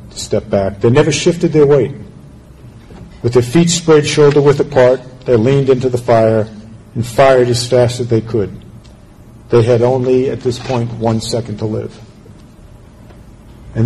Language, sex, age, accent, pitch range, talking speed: English, male, 50-69, American, 105-125 Hz, 165 wpm